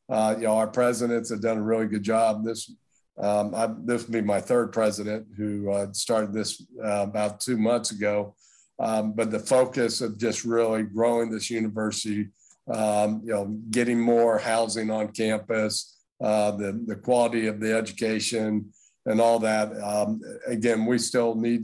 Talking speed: 170 wpm